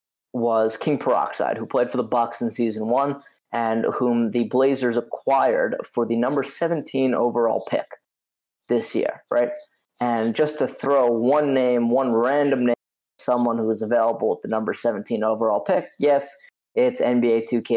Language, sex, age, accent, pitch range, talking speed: English, male, 20-39, American, 115-135 Hz, 160 wpm